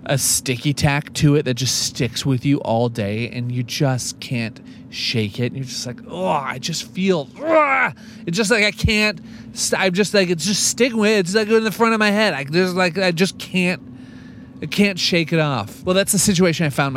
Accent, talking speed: American, 235 wpm